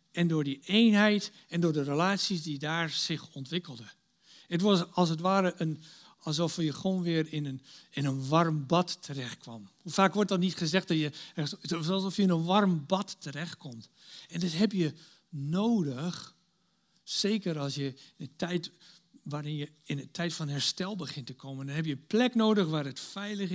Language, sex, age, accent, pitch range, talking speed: Dutch, male, 60-79, Dutch, 140-180 Hz, 190 wpm